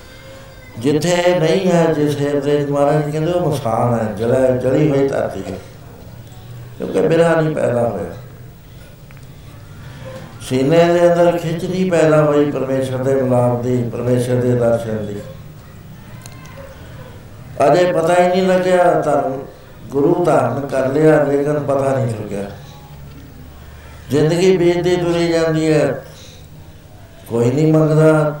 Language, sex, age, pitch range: Punjabi, male, 60-79, 115-150 Hz